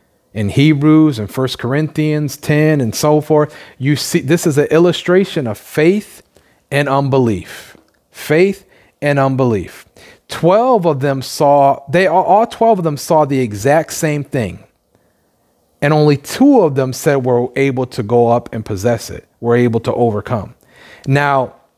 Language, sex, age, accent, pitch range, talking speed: English, male, 40-59, American, 120-160 Hz, 150 wpm